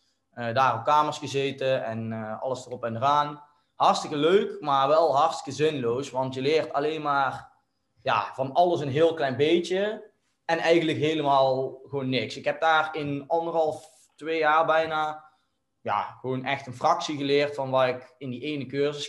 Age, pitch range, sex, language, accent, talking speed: 20-39, 130-150 Hz, male, Dutch, Dutch, 175 wpm